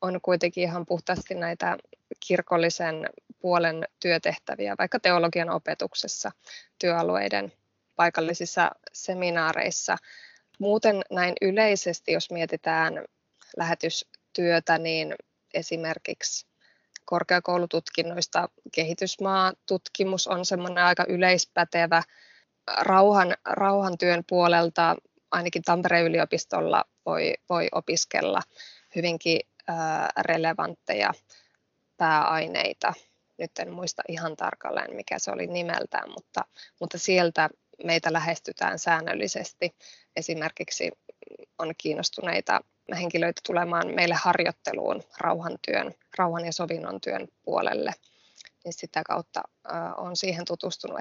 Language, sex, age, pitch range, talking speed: Finnish, female, 20-39, 170-185 Hz, 85 wpm